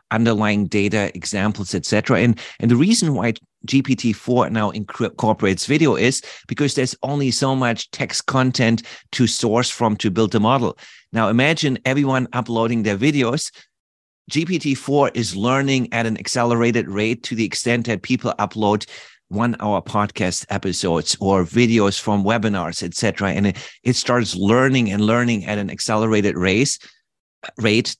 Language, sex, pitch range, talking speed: English, male, 105-125 Hz, 150 wpm